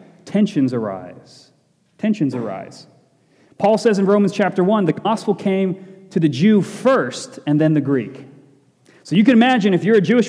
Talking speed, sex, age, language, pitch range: 170 wpm, male, 30-49, English, 145-200 Hz